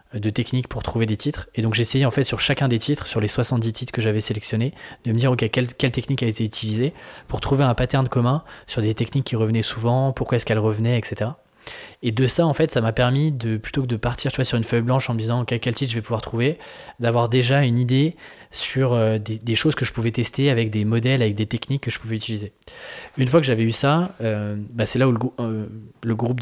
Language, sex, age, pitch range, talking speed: French, male, 20-39, 110-130 Hz, 265 wpm